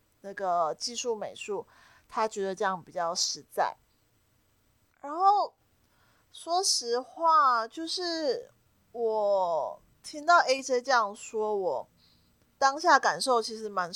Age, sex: 30-49, female